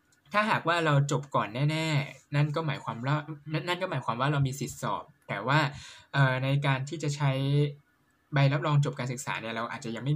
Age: 20-39